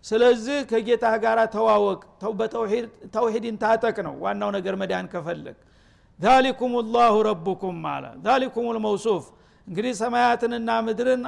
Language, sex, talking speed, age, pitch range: Amharic, male, 110 wpm, 50-69, 210-245 Hz